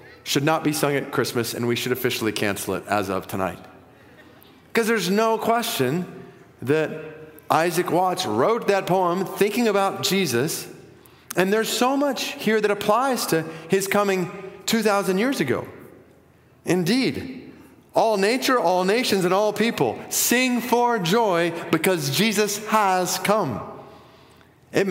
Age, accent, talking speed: 30-49, American, 135 wpm